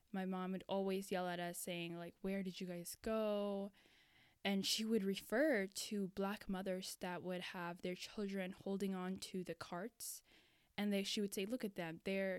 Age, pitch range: 10-29, 180-210 Hz